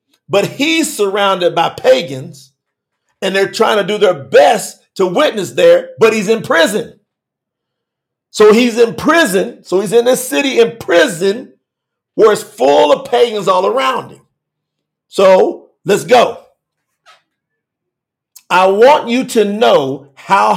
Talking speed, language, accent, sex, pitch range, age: 135 wpm, English, American, male, 155-225 Hz, 50-69